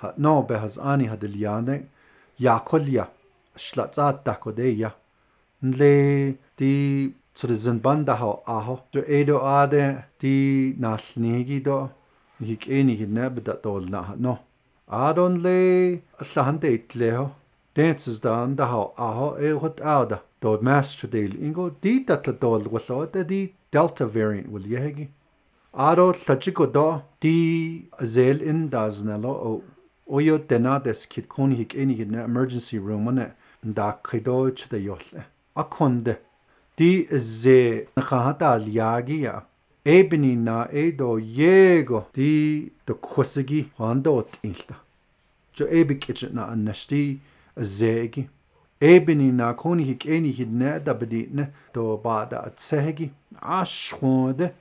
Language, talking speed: English, 95 wpm